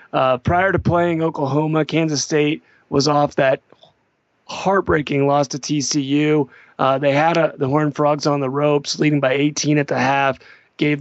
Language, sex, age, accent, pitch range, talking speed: English, male, 30-49, American, 140-160 Hz, 170 wpm